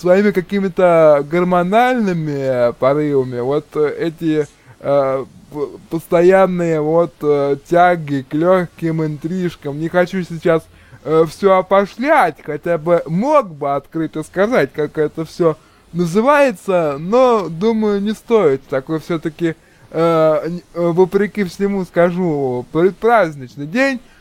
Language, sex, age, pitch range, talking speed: Russian, male, 20-39, 155-200 Hz, 100 wpm